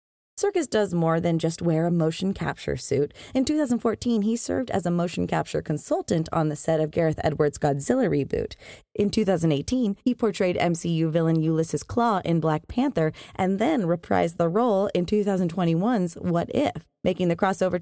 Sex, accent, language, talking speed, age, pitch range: female, American, English, 170 wpm, 20-39, 160-235 Hz